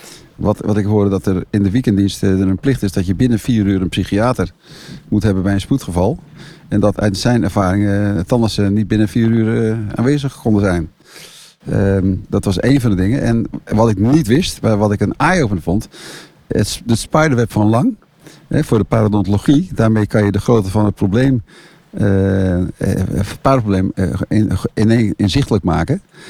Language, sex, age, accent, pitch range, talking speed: Dutch, male, 50-69, Dutch, 100-125 Hz, 185 wpm